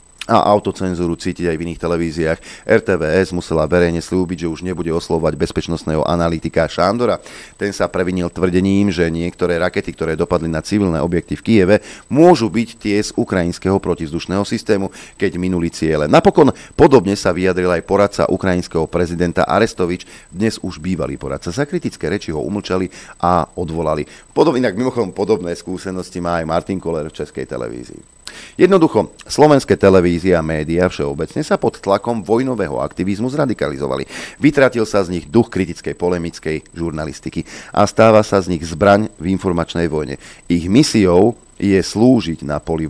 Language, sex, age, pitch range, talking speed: Slovak, male, 40-59, 85-100 Hz, 150 wpm